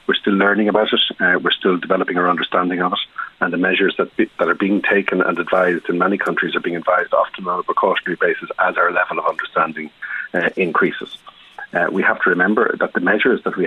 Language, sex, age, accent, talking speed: English, male, 40-59, Irish, 230 wpm